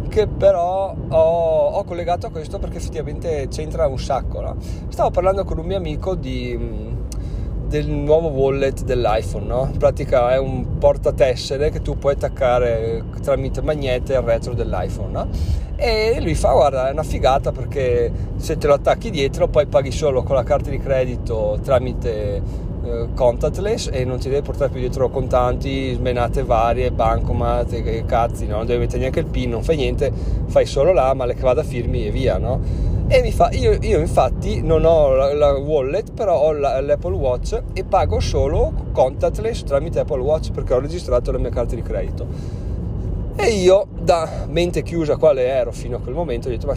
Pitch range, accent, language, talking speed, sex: 110-145 Hz, native, Italian, 180 wpm, male